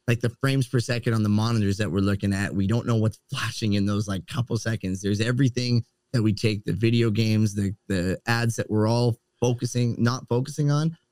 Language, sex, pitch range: English, male, 105-130 Hz